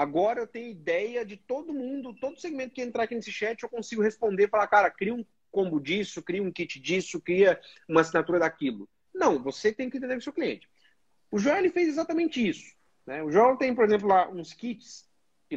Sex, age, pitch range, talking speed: male, 40-59, 170-270 Hz, 215 wpm